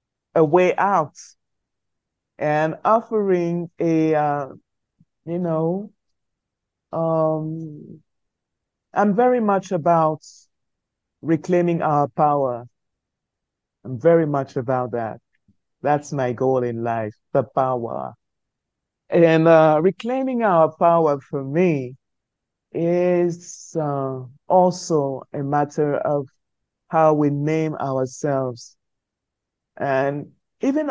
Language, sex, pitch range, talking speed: English, male, 135-175 Hz, 95 wpm